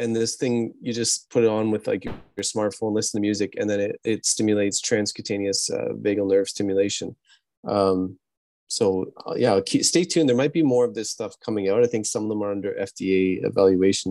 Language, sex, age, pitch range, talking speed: English, male, 30-49, 105-130 Hz, 215 wpm